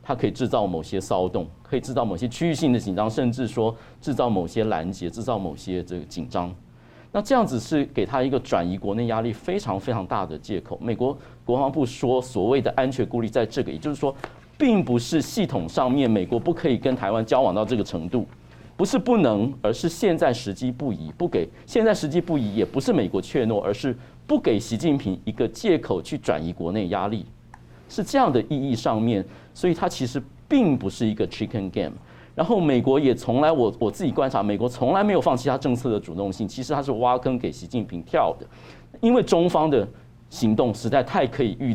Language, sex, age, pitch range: Chinese, male, 50-69, 105-140 Hz